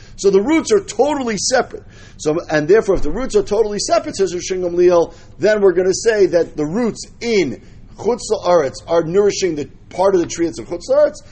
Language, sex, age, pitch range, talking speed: English, male, 50-69, 145-210 Hz, 195 wpm